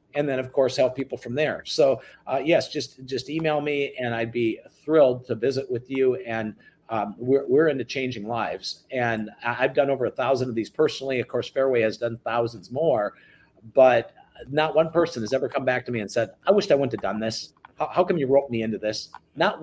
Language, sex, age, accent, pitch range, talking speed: English, male, 50-69, American, 120-155 Hz, 225 wpm